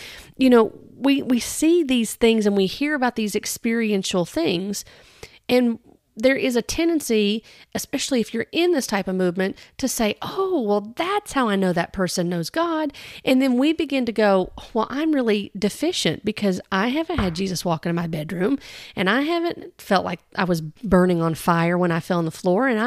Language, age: English, 40-59